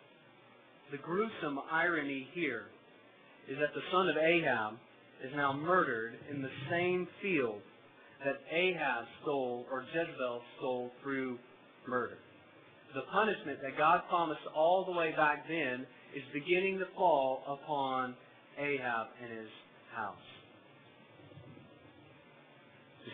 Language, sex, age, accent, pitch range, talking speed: English, male, 40-59, American, 135-165 Hz, 115 wpm